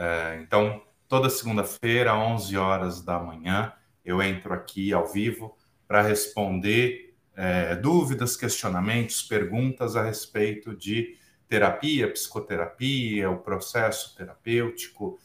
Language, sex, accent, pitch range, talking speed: Portuguese, male, Brazilian, 90-115 Hz, 100 wpm